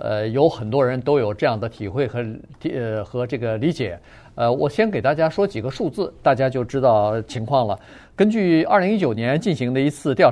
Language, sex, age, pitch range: Chinese, male, 50-69, 120-175 Hz